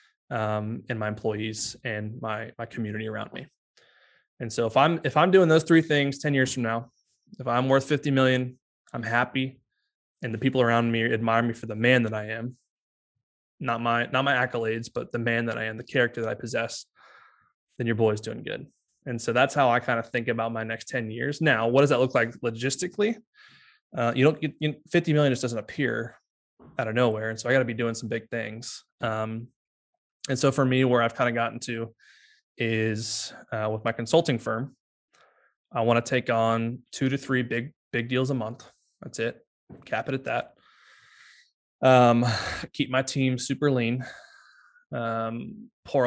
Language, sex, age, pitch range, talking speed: English, male, 20-39, 115-135 Hz, 200 wpm